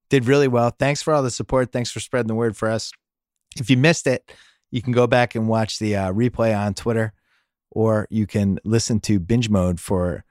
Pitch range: 90-115 Hz